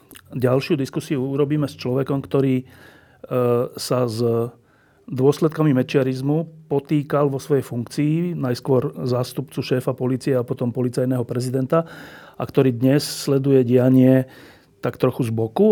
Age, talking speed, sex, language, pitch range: 40-59, 120 wpm, male, Slovak, 120-145 Hz